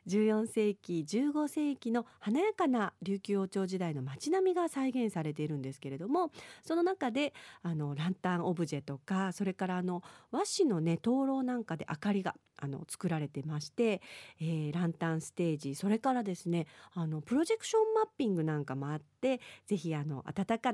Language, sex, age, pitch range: Japanese, female, 40-59, 165-255 Hz